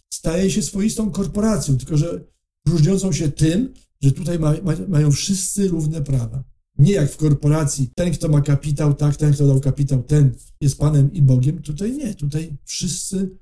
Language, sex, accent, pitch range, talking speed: Polish, male, native, 135-175 Hz, 175 wpm